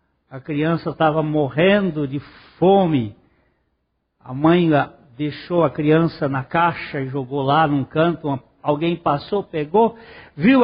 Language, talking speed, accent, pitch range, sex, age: Portuguese, 125 wpm, Brazilian, 145-190 Hz, male, 60-79